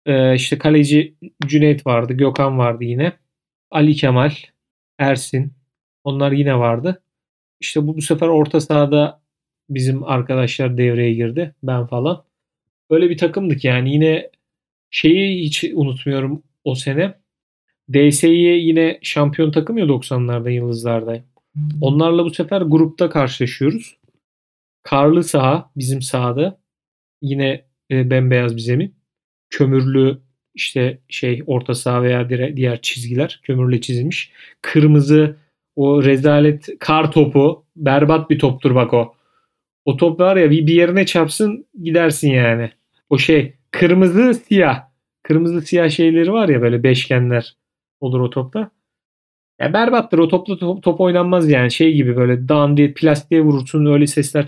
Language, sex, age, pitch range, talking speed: Turkish, male, 40-59, 130-165 Hz, 125 wpm